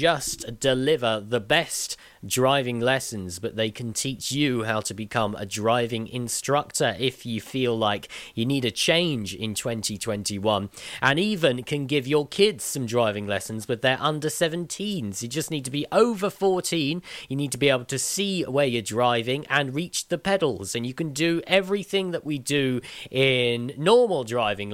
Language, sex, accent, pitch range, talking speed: English, male, British, 115-155 Hz, 175 wpm